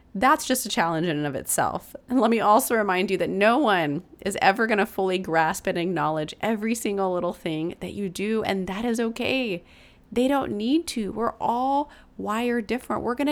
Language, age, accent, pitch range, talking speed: English, 30-49, American, 190-245 Hz, 205 wpm